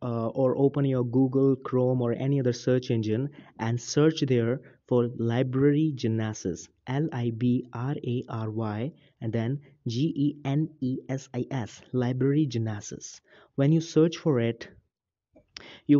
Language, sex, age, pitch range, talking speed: English, male, 20-39, 120-140 Hz, 110 wpm